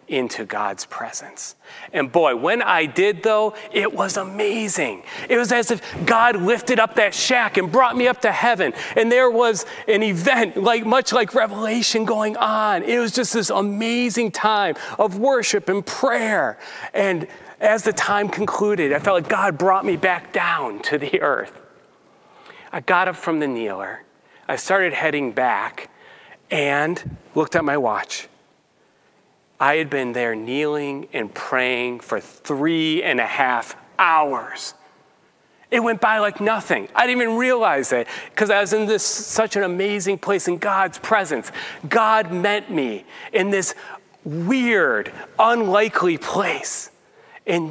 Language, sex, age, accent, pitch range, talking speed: English, male, 40-59, American, 175-230 Hz, 155 wpm